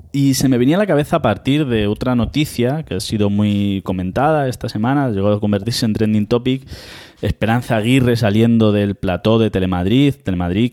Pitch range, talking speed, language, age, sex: 100-130 Hz, 185 wpm, Spanish, 20-39, male